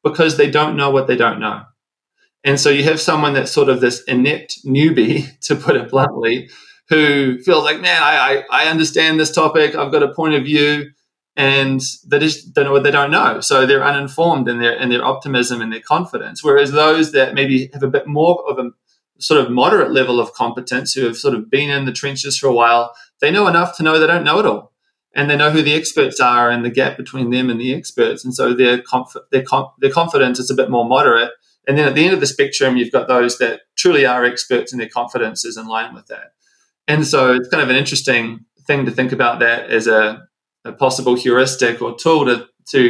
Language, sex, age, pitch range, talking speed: English, male, 20-39, 125-155 Hz, 235 wpm